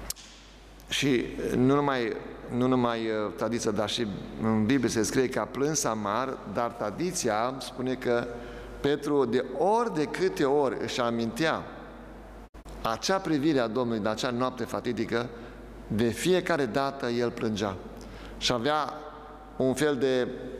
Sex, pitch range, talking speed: male, 115-145 Hz, 135 wpm